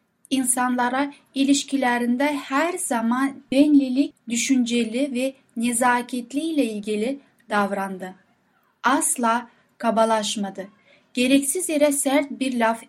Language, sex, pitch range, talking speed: Turkish, female, 220-280 Hz, 85 wpm